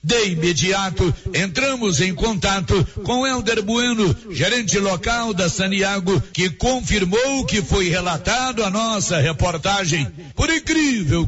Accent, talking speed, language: Brazilian, 115 wpm, Portuguese